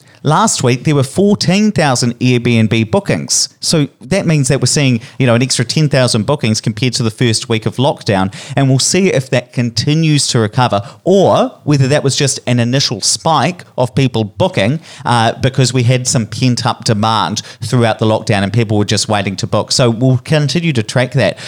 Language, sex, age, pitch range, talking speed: English, male, 30-49, 115-150 Hz, 195 wpm